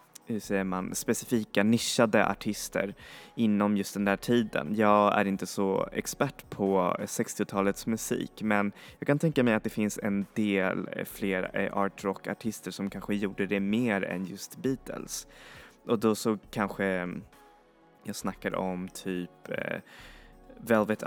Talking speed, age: 135 wpm, 20-39